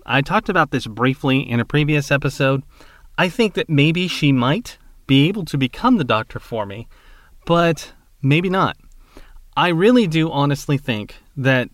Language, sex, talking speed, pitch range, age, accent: English, male, 165 wpm, 110-155 Hz, 30-49, American